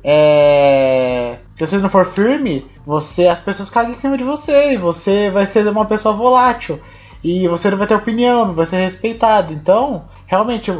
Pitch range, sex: 150-210 Hz, male